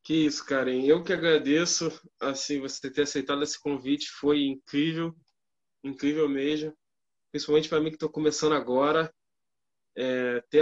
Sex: male